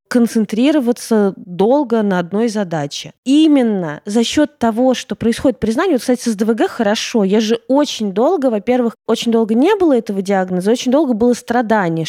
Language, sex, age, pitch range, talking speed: Russian, female, 20-39, 200-265 Hz, 160 wpm